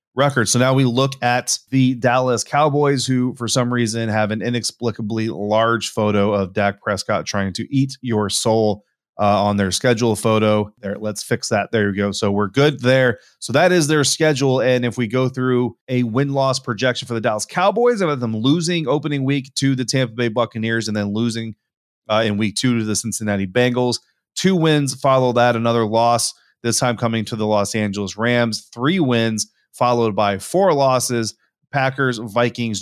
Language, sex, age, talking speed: English, male, 30-49, 190 wpm